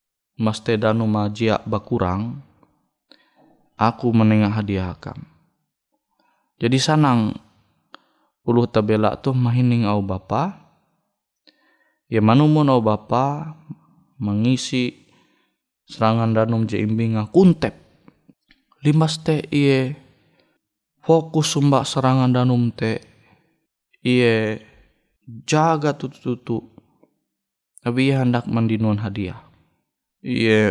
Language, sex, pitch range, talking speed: Indonesian, male, 110-145 Hz, 80 wpm